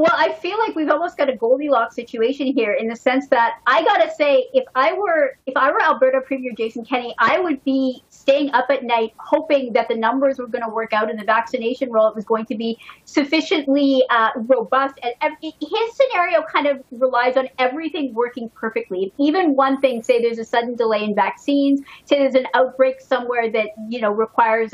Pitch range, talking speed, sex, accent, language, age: 225-280 Hz, 205 wpm, female, American, English, 40-59